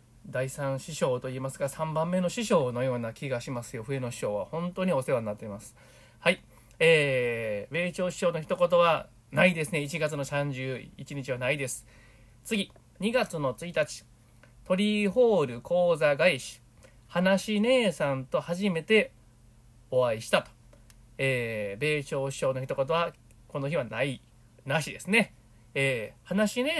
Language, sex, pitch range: Japanese, male, 120-175 Hz